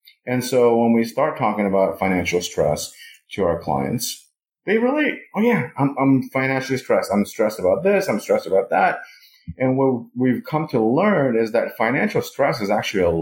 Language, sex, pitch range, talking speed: English, male, 100-130 Hz, 180 wpm